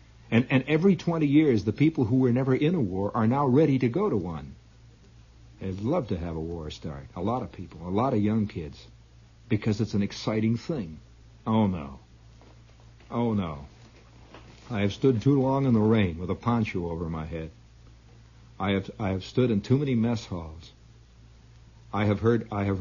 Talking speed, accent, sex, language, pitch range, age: 195 wpm, American, male, English, 90-115 Hz, 60-79